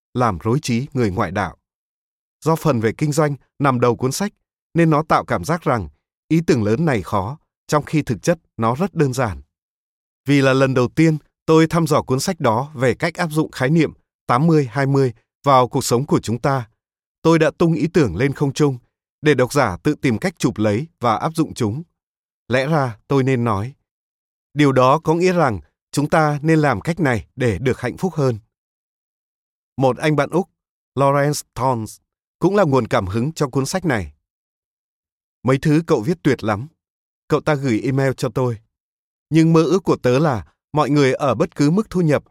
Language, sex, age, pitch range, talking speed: Vietnamese, male, 20-39, 120-155 Hz, 200 wpm